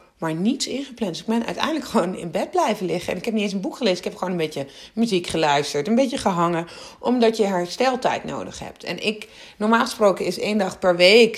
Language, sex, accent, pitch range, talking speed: Dutch, female, Dutch, 180-240 Hz, 230 wpm